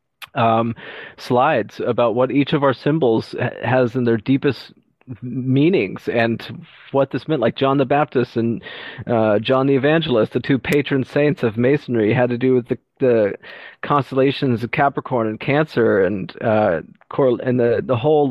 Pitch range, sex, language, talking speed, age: 115-135 Hz, male, English, 165 wpm, 30-49